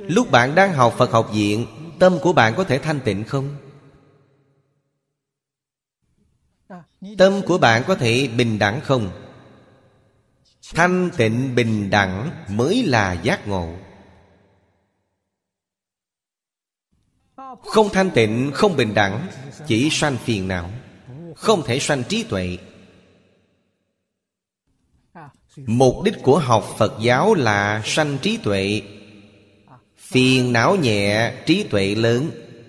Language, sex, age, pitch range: Vietnamese, male, 30-49, 105-140 Hz